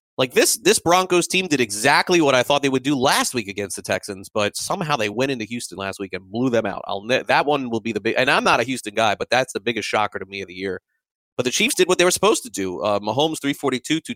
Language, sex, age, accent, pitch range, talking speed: English, male, 30-49, American, 105-130 Hz, 285 wpm